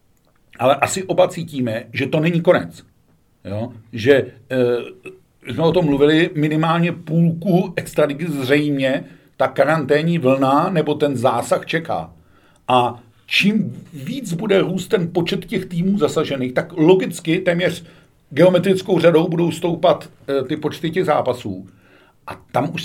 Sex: male